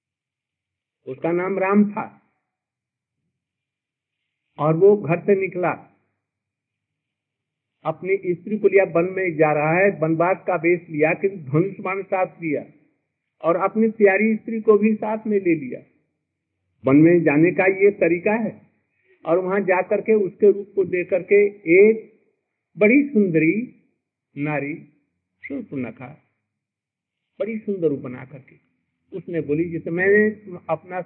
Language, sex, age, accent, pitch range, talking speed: Hindi, male, 50-69, native, 145-200 Hz, 125 wpm